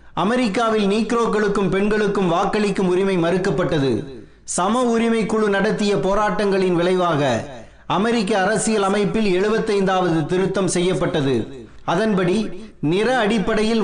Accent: native